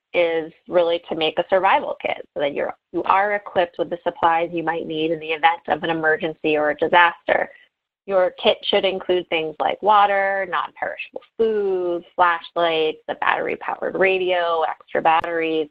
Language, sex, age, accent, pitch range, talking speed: English, female, 20-39, American, 160-195 Hz, 165 wpm